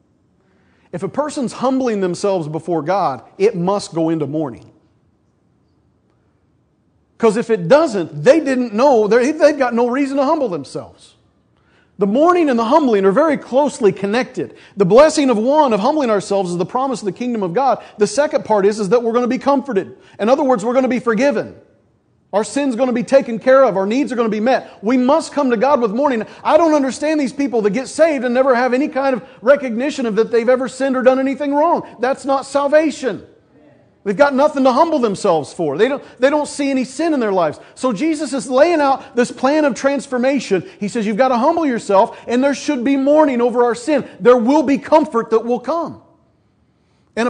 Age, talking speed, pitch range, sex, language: 40-59, 210 wpm, 220-280 Hz, male, English